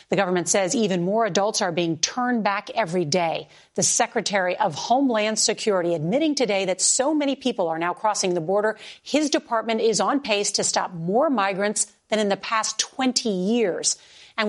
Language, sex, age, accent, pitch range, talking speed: English, female, 40-59, American, 185-230 Hz, 180 wpm